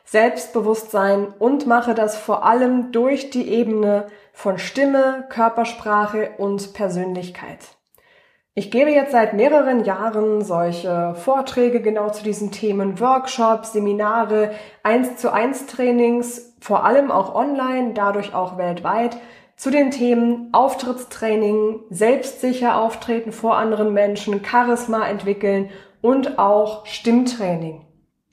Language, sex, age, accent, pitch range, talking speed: German, female, 20-39, German, 205-245 Hz, 105 wpm